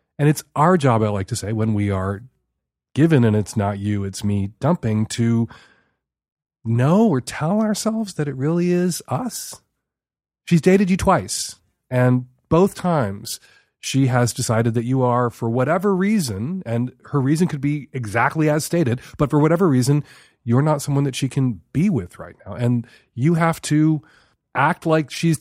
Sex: male